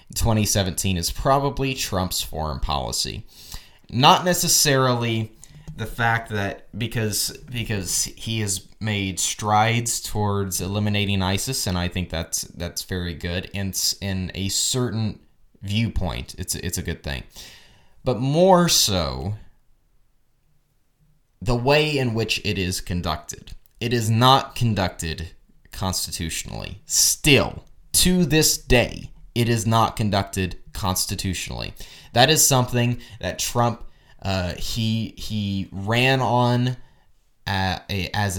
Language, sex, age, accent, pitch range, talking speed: English, male, 20-39, American, 95-120 Hz, 115 wpm